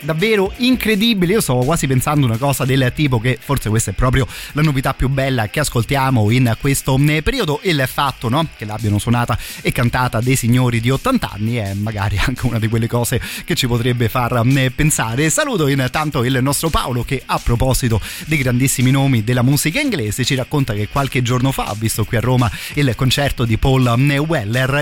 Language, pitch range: Italian, 115-140 Hz